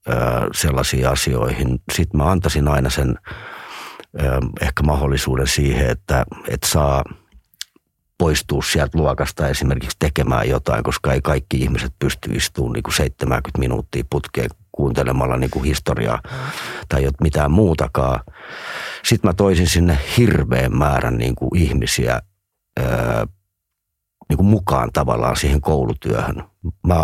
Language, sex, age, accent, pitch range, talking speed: Finnish, male, 40-59, native, 65-85 Hz, 100 wpm